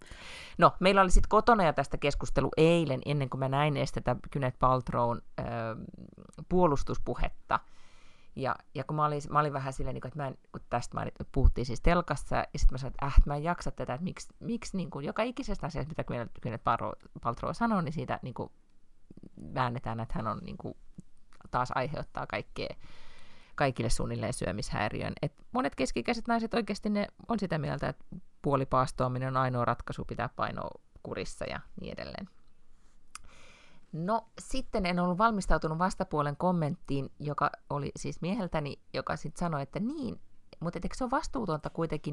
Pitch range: 140-205 Hz